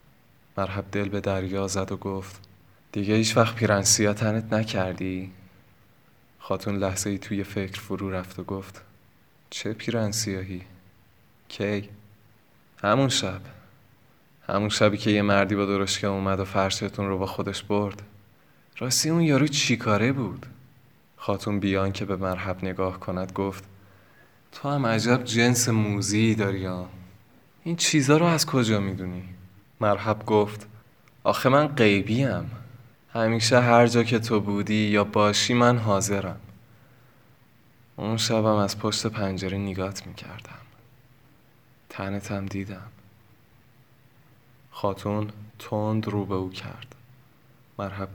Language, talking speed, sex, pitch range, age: Persian, 120 wpm, male, 100-120 Hz, 20-39